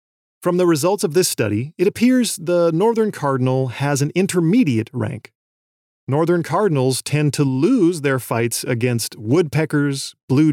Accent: American